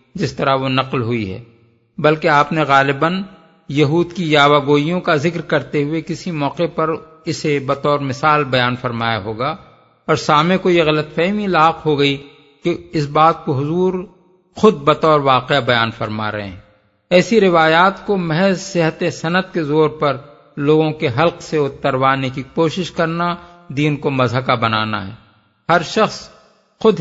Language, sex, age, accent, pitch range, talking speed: English, male, 50-69, Indian, 135-170 Hz, 155 wpm